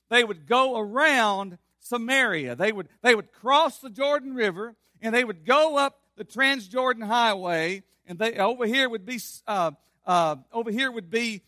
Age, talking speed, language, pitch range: 50-69, 175 wpm, English, 180-255 Hz